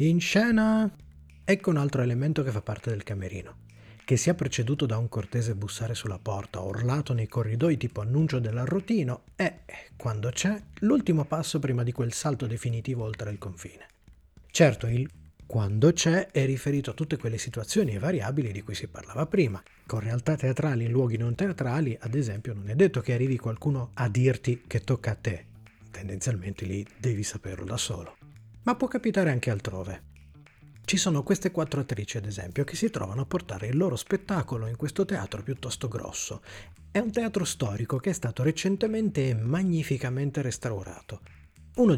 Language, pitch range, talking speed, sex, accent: Italian, 110-155 Hz, 170 wpm, male, native